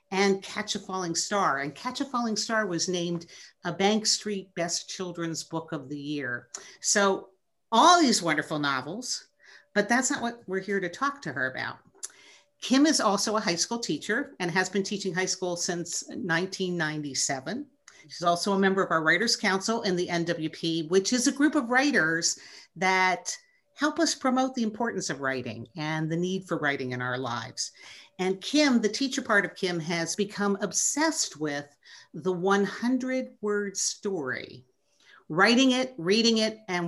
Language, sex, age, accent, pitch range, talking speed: English, female, 50-69, American, 170-220 Hz, 170 wpm